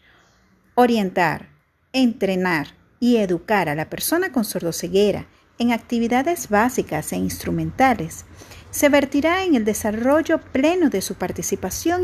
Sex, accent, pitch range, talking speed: female, American, 180-280 Hz, 115 wpm